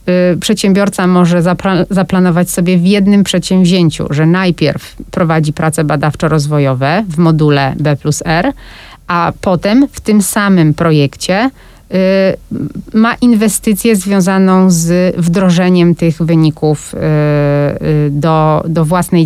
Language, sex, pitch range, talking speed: Polish, female, 160-195 Hz, 95 wpm